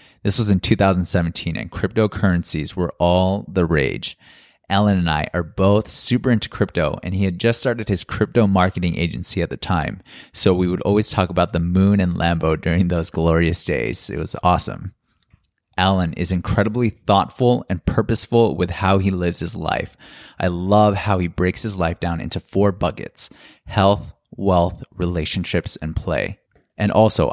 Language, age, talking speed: English, 20-39, 170 wpm